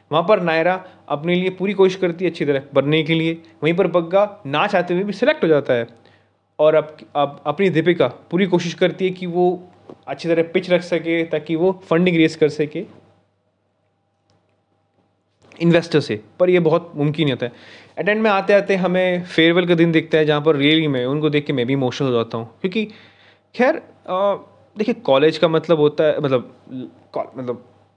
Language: Hindi